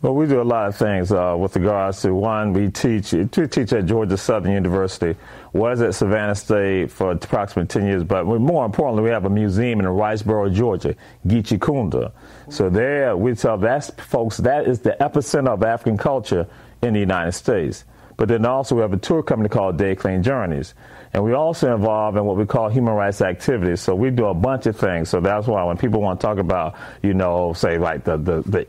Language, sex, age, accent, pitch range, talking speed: English, male, 40-59, American, 95-115 Hz, 215 wpm